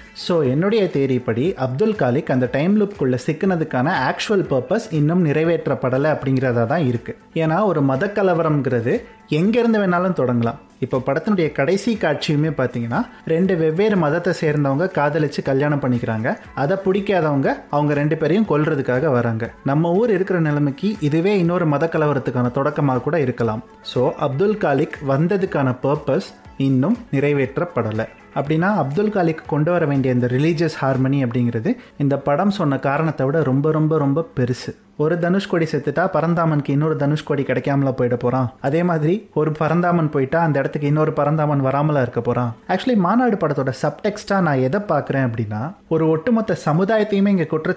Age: 30-49